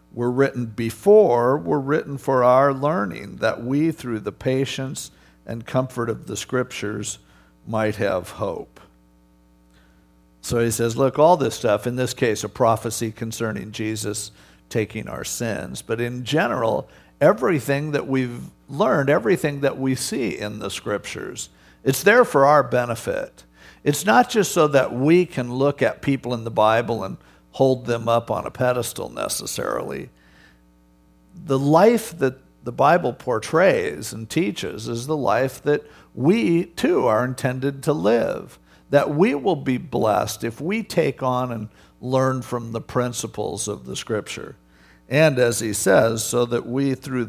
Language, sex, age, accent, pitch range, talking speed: English, male, 50-69, American, 105-140 Hz, 155 wpm